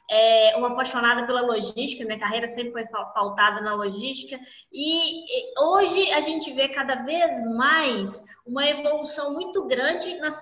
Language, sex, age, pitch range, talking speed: Portuguese, female, 20-39, 235-320 Hz, 145 wpm